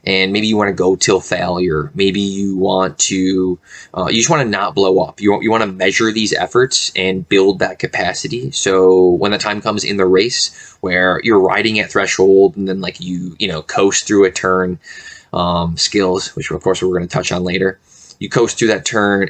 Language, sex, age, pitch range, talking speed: English, male, 20-39, 95-105 Hz, 220 wpm